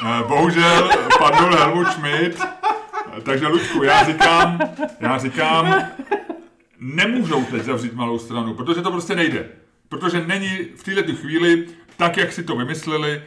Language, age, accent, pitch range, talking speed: Czech, 30-49, native, 120-150 Hz, 130 wpm